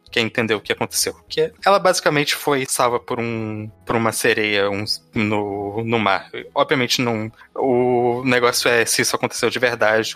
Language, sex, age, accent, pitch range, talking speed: Portuguese, male, 20-39, Brazilian, 110-150 Hz, 150 wpm